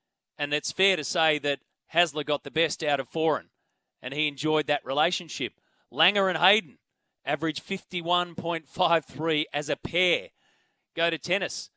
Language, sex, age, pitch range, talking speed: English, male, 30-49, 145-170 Hz, 150 wpm